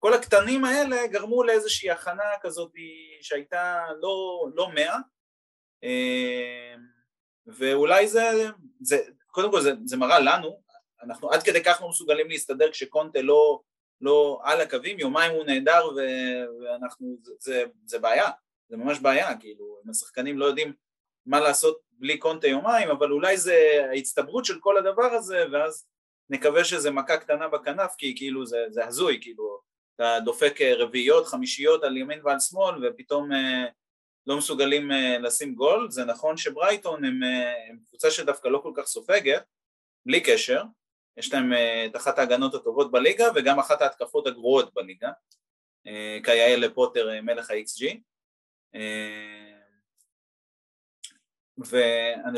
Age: 30-49